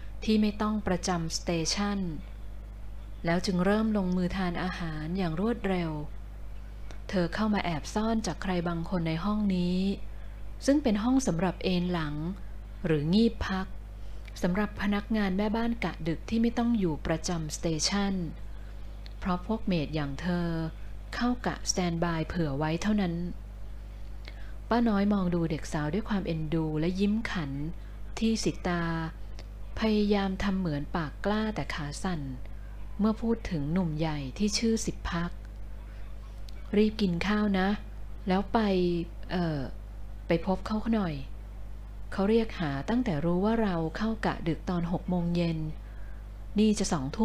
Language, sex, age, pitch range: Thai, female, 20-39, 145-200 Hz